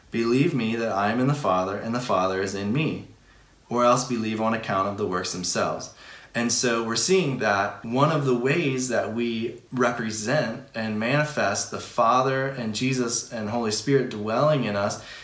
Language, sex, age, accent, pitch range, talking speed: English, male, 20-39, American, 110-135 Hz, 185 wpm